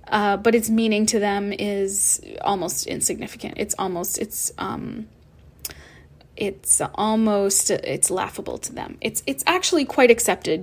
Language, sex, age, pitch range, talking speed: English, female, 20-39, 200-230 Hz, 135 wpm